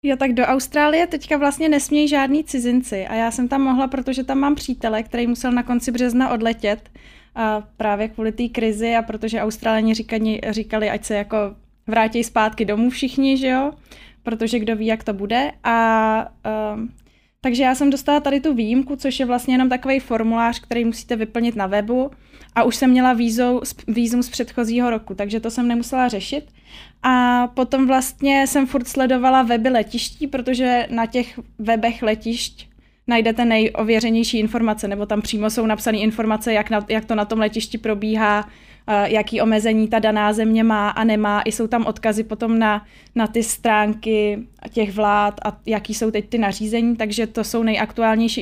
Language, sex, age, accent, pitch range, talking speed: Czech, female, 20-39, native, 220-255 Hz, 175 wpm